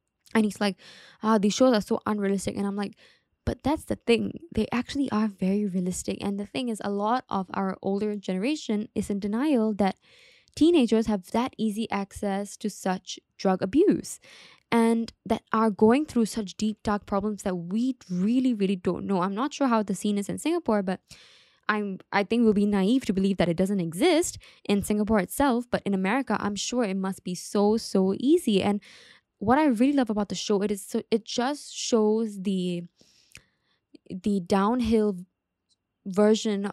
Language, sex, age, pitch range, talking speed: English, female, 10-29, 195-230 Hz, 185 wpm